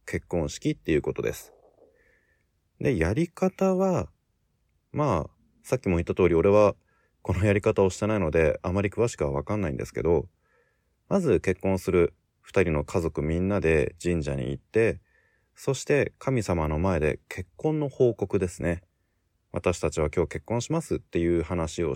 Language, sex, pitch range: Japanese, male, 85-120 Hz